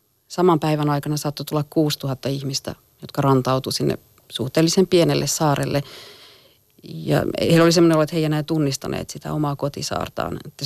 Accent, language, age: native, Finnish, 40-59